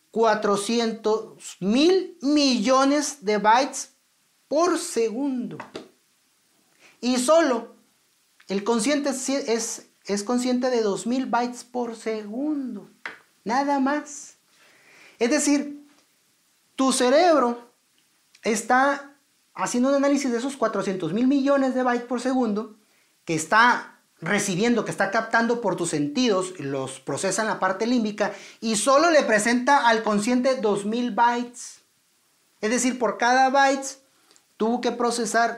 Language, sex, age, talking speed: Spanish, male, 40-59, 120 wpm